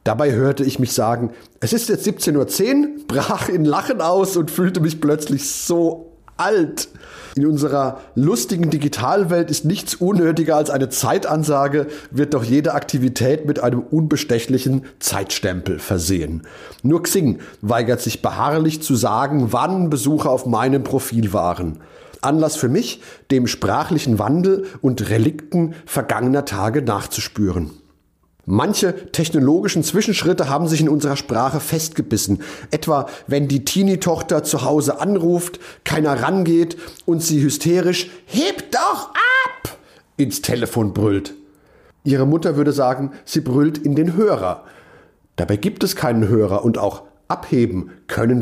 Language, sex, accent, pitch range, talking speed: German, male, German, 120-160 Hz, 135 wpm